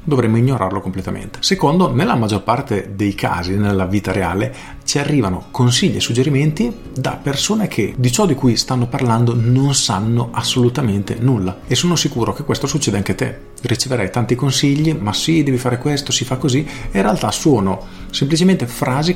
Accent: native